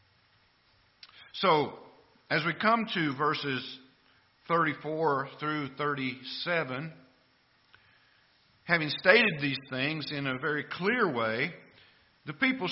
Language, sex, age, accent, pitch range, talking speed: English, male, 50-69, American, 125-170 Hz, 95 wpm